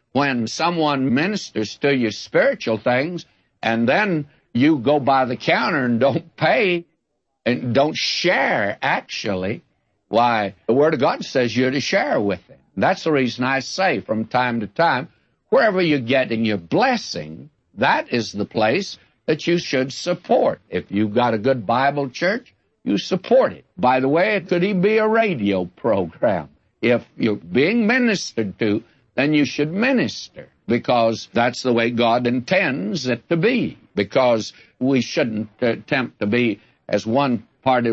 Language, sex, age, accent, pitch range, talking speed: English, male, 60-79, American, 115-150 Hz, 160 wpm